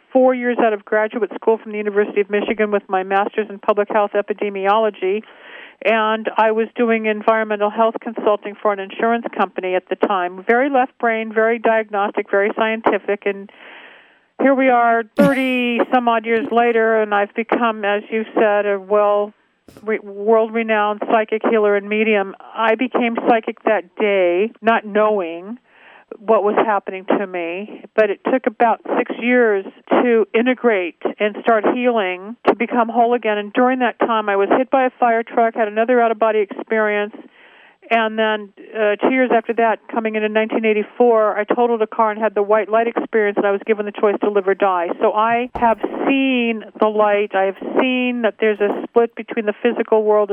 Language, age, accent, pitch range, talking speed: English, 50-69, American, 205-230 Hz, 180 wpm